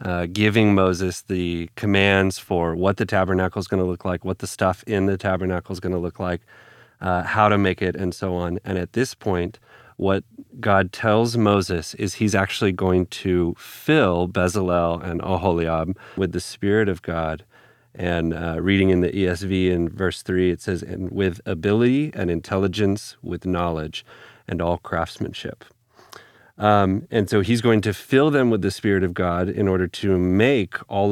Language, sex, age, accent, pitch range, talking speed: English, male, 40-59, American, 90-105 Hz, 180 wpm